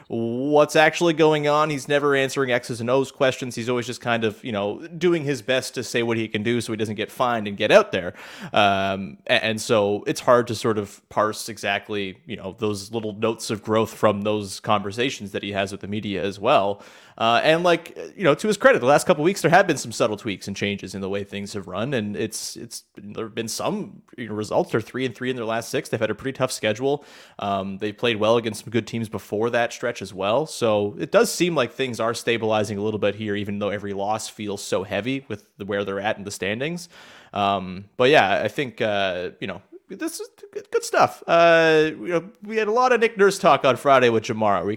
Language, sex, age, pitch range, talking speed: English, male, 30-49, 105-145 Hz, 245 wpm